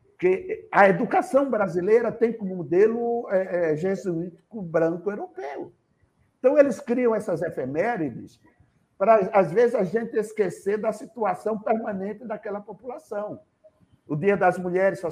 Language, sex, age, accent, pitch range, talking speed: Portuguese, male, 60-79, Brazilian, 180-240 Hz, 120 wpm